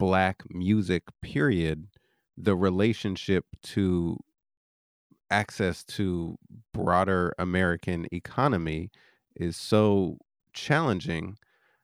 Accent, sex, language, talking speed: American, male, English, 70 wpm